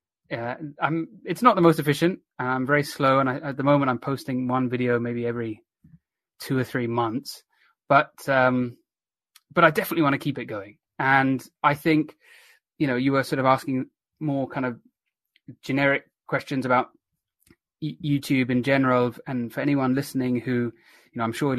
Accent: British